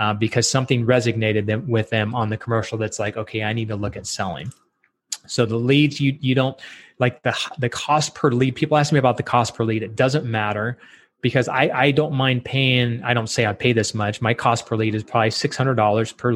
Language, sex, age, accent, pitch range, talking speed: English, male, 20-39, American, 110-140 Hz, 230 wpm